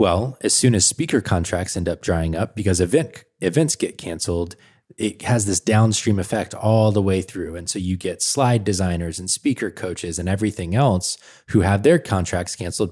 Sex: male